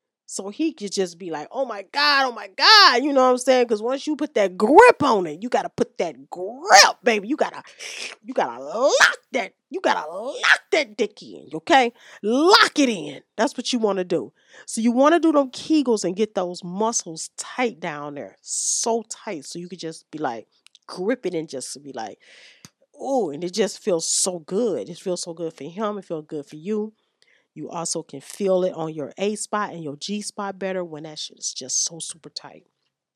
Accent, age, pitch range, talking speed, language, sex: American, 30-49, 165-230 Hz, 215 wpm, English, female